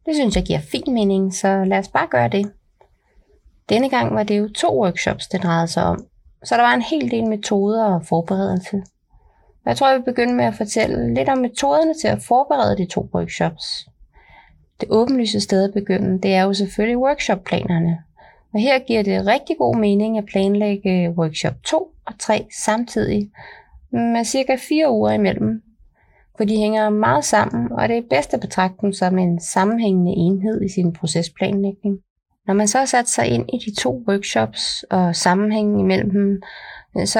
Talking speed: 180 wpm